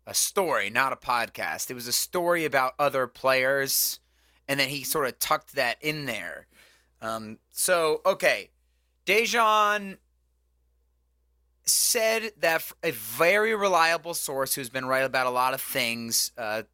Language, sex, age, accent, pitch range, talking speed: English, male, 30-49, American, 115-155 Hz, 145 wpm